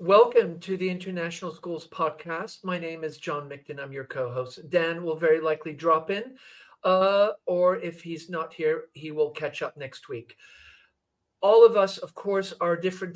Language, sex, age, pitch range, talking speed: English, male, 50-69, 165-195 Hz, 180 wpm